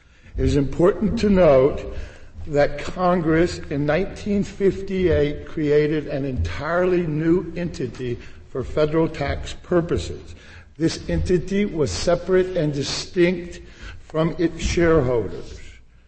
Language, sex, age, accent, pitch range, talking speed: English, male, 60-79, American, 140-175 Hz, 100 wpm